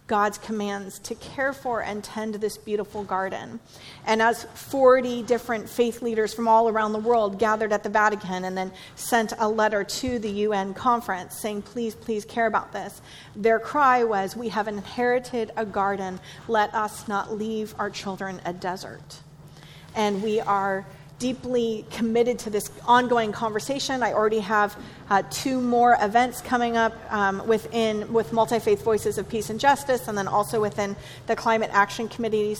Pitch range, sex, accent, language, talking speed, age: 200-235 Hz, female, American, English, 165 wpm, 40-59